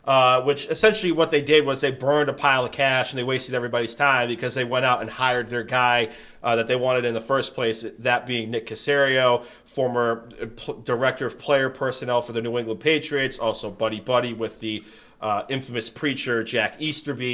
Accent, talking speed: American, 200 wpm